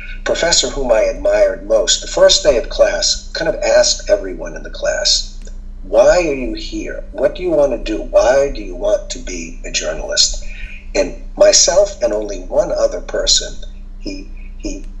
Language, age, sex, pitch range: English, 50-69, male, 290-300 Hz